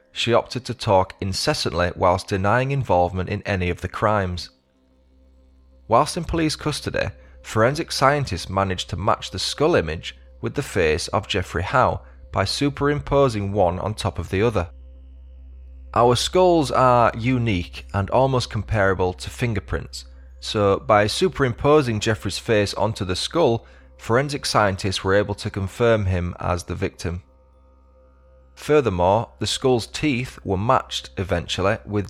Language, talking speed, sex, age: English, 140 wpm, male, 20-39